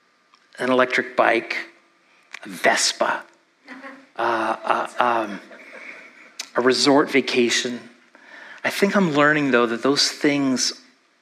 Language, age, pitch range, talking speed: English, 40-59, 125-155 Hz, 100 wpm